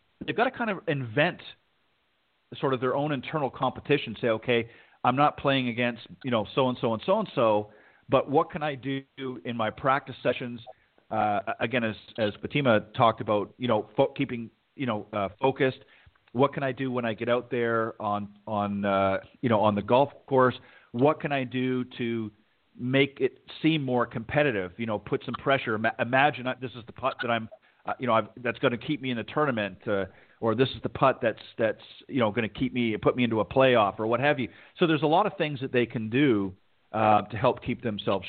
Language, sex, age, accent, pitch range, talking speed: English, male, 40-59, American, 110-135 Hz, 215 wpm